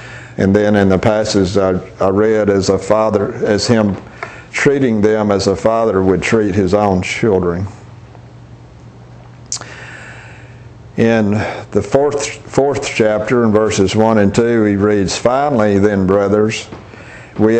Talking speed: 135 wpm